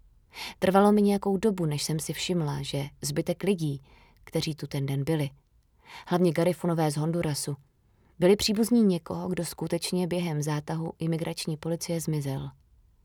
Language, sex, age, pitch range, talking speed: Czech, female, 20-39, 145-180 Hz, 140 wpm